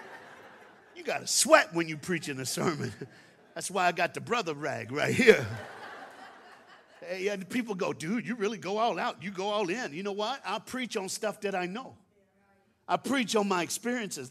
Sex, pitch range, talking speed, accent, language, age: male, 130-215 Hz, 200 wpm, American, English, 50-69